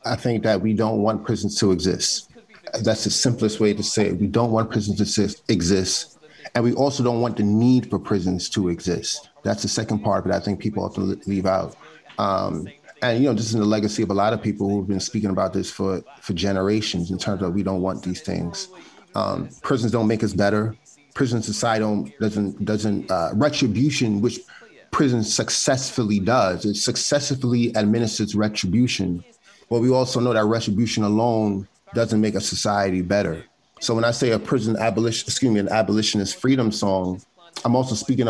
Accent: American